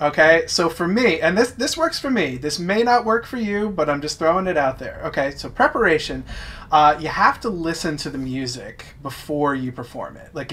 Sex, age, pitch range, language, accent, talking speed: male, 30-49, 135-160 Hz, English, American, 220 wpm